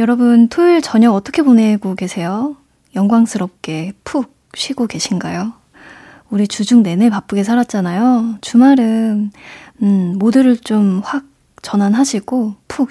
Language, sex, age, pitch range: Korean, female, 20-39, 205-270 Hz